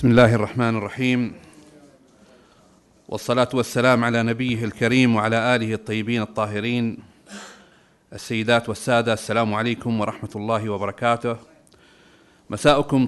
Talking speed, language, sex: 95 wpm, Arabic, male